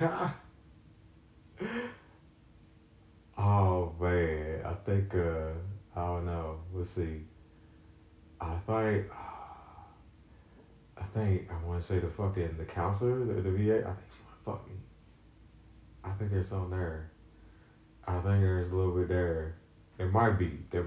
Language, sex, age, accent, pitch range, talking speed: English, male, 30-49, American, 85-110 Hz, 140 wpm